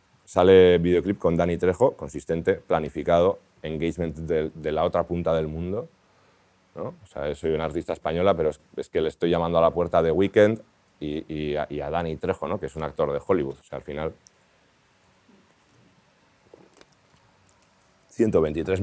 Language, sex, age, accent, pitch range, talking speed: Spanish, male, 30-49, Spanish, 85-105 Hz, 170 wpm